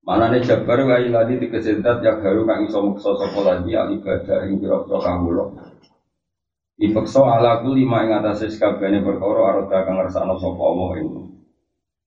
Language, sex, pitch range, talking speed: Indonesian, male, 90-105 Hz, 145 wpm